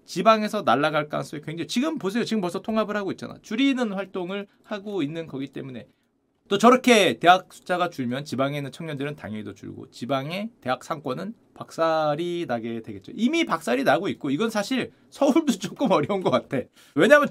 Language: Korean